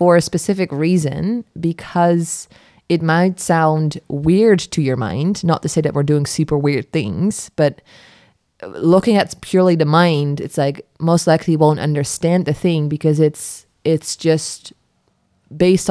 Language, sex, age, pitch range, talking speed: English, female, 20-39, 145-160 Hz, 145 wpm